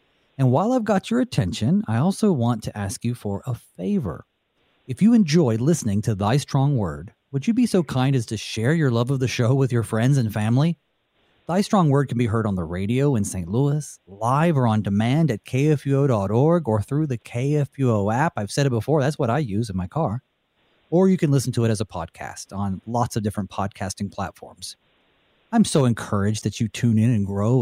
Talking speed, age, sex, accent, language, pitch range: 215 wpm, 30-49, male, American, English, 110-150 Hz